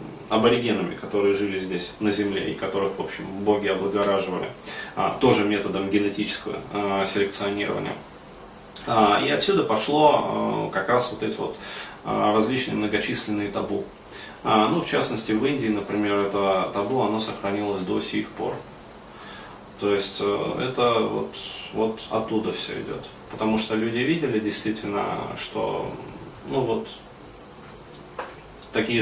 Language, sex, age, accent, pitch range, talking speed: Russian, male, 30-49, native, 100-110 Hz, 120 wpm